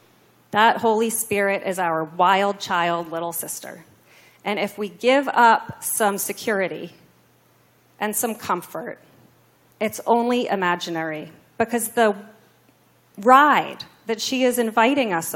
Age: 30-49